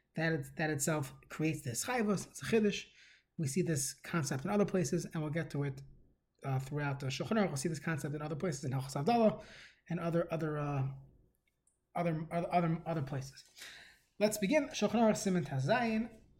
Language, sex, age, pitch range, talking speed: English, male, 20-39, 150-200 Hz, 185 wpm